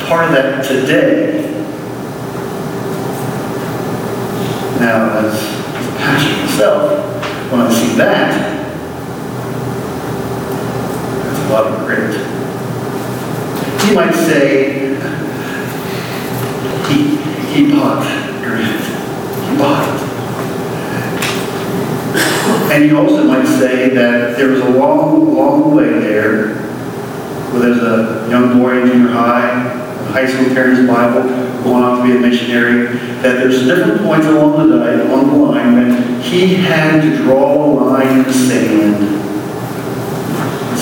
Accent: American